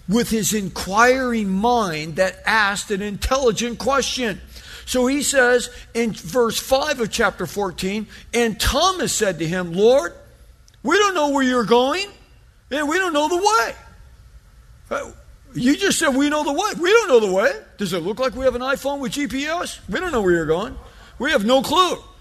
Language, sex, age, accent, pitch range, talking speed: English, male, 50-69, American, 170-270 Hz, 185 wpm